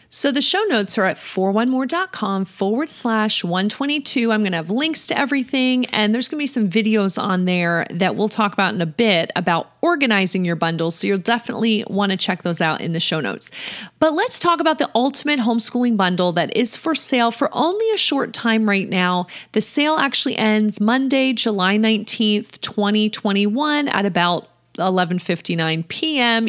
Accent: American